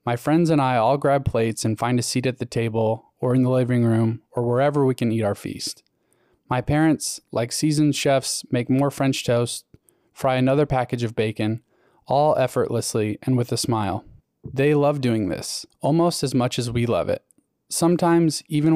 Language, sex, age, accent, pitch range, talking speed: English, male, 20-39, American, 115-145 Hz, 190 wpm